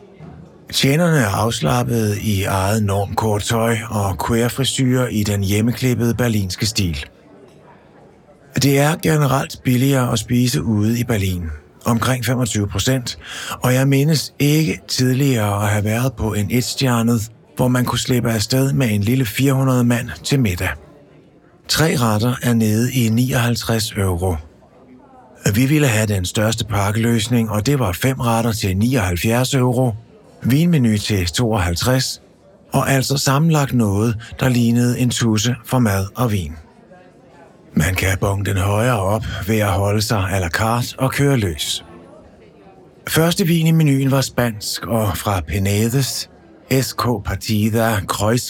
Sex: male